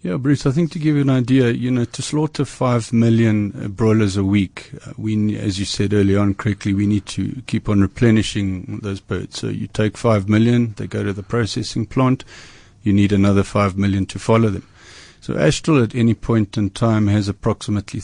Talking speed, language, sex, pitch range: 210 wpm, English, male, 100-115 Hz